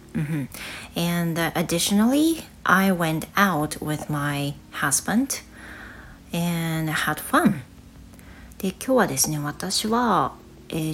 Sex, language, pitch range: female, Japanese, 150-200 Hz